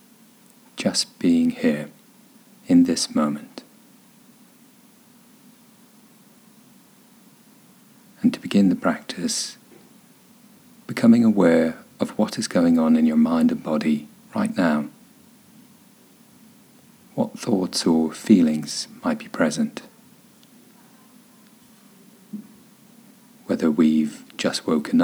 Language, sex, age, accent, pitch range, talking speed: English, male, 40-59, British, 225-245 Hz, 85 wpm